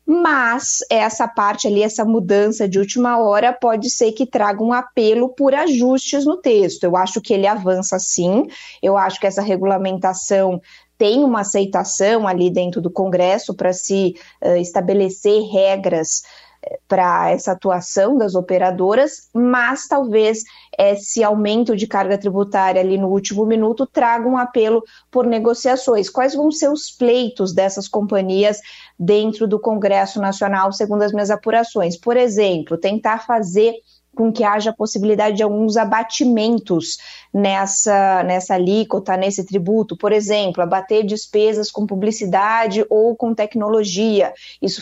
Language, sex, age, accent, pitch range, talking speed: Portuguese, female, 20-39, Brazilian, 195-235 Hz, 140 wpm